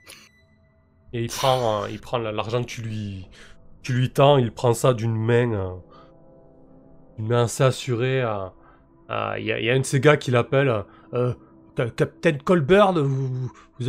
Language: French